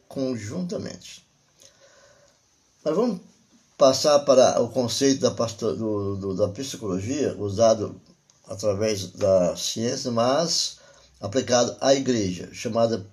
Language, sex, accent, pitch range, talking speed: Portuguese, male, Brazilian, 100-140 Hz, 100 wpm